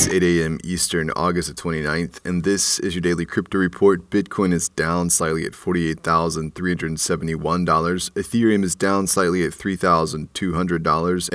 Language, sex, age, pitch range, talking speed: English, male, 30-49, 85-95 Hz, 135 wpm